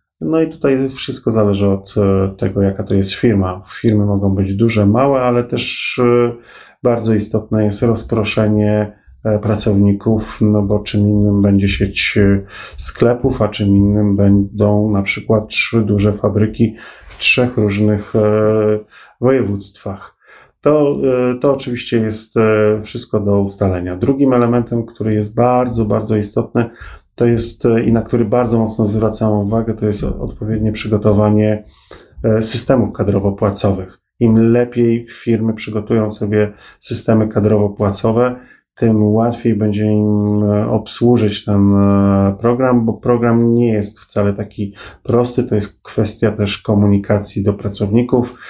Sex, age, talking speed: male, 30-49, 125 wpm